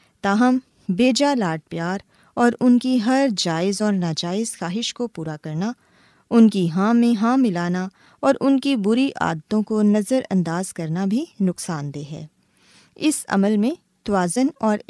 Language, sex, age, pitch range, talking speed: Urdu, female, 20-39, 175-245 Hz, 160 wpm